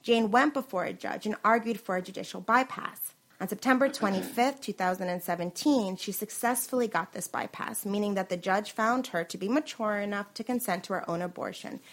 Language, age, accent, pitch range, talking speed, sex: English, 30-49, American, 175-230 Hz, 180 wpm, female